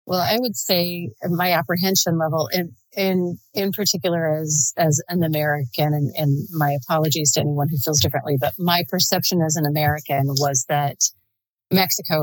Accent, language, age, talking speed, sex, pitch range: American, English, 40-59, 160 wpm, female, 150-180 Hz